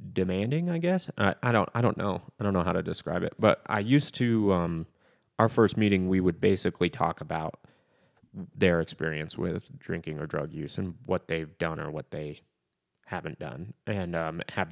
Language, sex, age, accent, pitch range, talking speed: English, male, 20-39, American, 90-110 Hz, 195 wpm